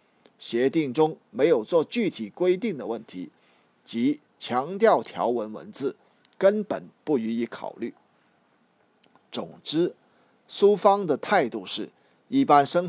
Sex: male